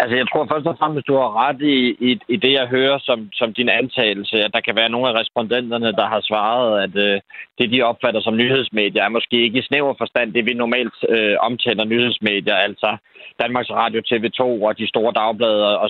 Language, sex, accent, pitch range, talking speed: Danish, male, native, 110-125 Hz, 220 wpm